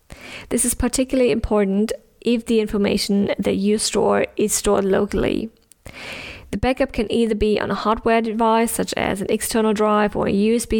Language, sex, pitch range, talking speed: English, female, 205-230 Hz, 165 wpm